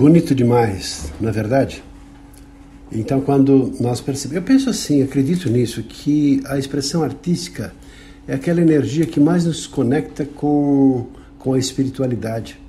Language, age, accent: Portuguese, 60-79, Brazilian